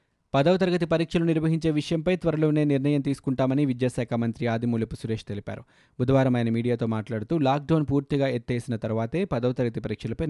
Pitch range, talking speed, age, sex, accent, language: 120-150 Hz, 140 wpm, 20-39, male, native, Telugu